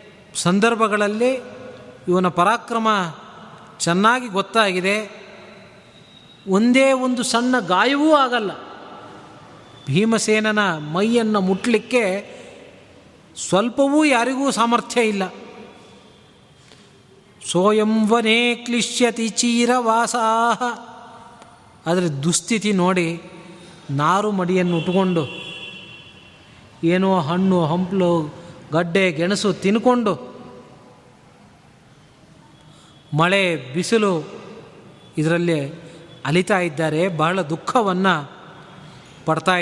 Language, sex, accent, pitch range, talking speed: Kannada, male, native, 170-230 Hz, 60 wpm